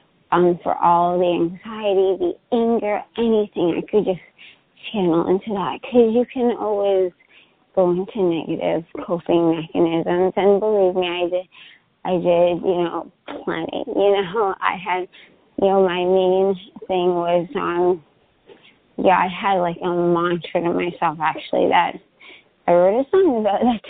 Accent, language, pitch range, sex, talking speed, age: American, English, 175-200 Hz, female, 150 wpm, 20-39